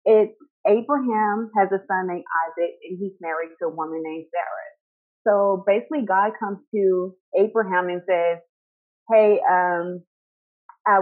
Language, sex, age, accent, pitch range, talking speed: English, female, 30-49, American, 175-215 Hz, 140 wpm